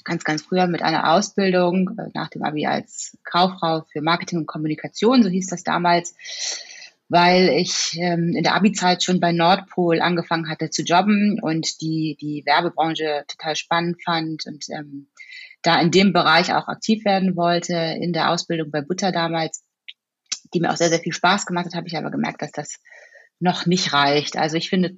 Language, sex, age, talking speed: German, female, 30-49, 180 wpm